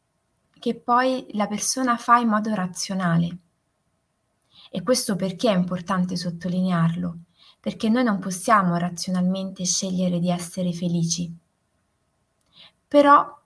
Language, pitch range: Italian, 180-225 Hz